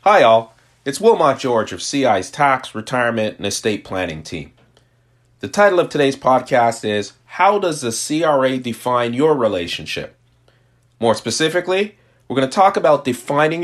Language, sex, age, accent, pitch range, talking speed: English, male, 40-59, American, 115-145 Hz, 150 wpm